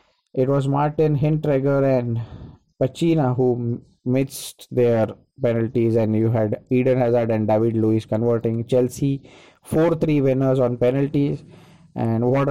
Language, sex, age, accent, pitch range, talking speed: English, male, 20-39, Indian, 115-135 Hz, 125 wpm